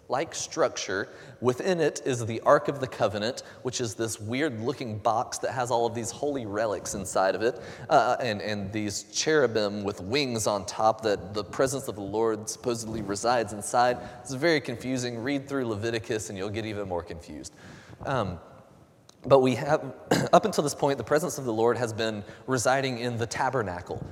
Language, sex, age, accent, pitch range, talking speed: English, male, 30-49, American, 115-155 Hz, 185 wpm